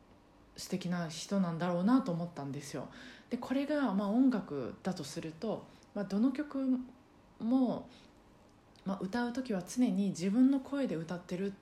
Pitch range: 175-235 Hz